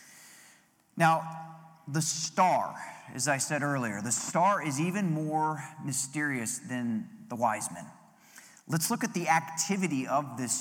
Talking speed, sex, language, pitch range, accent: 135 wpm, male, English, 140-180 Hz, American